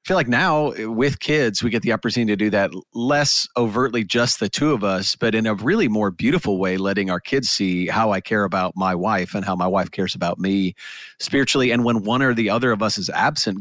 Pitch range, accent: 105-135 Hz, American